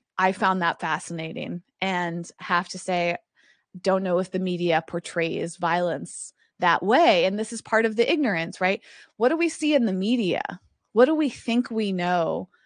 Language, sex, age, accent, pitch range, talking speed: English, female, 20-39, American, 175-215 Hz, 180 wpm